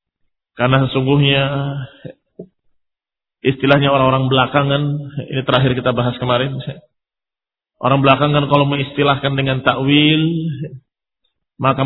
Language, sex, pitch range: Indonesian, male, 130-175 Hz